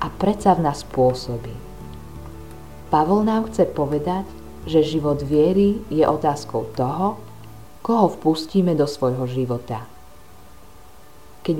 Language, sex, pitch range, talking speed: Slovak, female, 120-165 Hz, 110 wpm